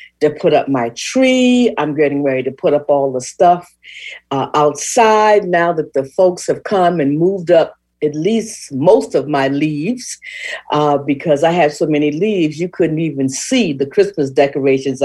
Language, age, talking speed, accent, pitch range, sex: English, 50-69, 175 wpm, American, 145-200 Hz, female